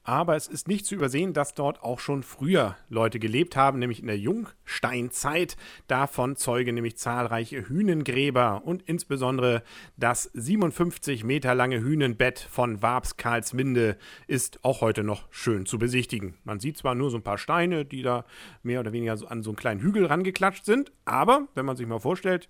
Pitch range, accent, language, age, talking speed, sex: 115-155 Hz, German, English, 40-59, 180 wpm, male